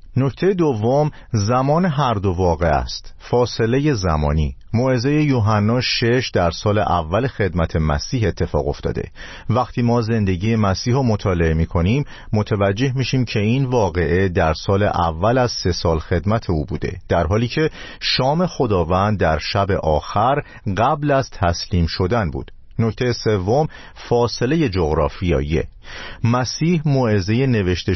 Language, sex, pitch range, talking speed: Persian, male, 85-125 Hz, 135 wpm